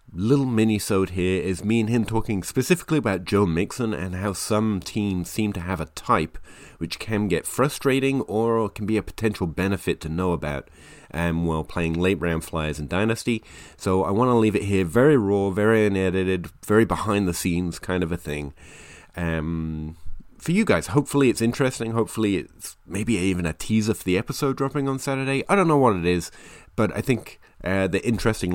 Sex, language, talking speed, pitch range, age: male, English, 185 wpm, 85-110 Hz, 30-49